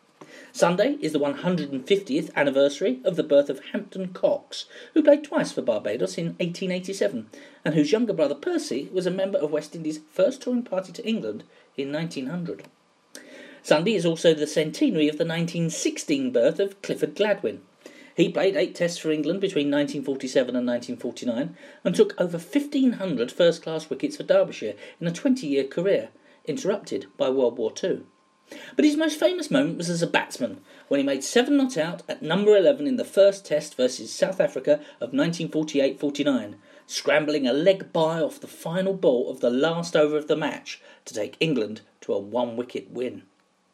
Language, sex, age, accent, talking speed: English, male, 40-59, British, 170 wpm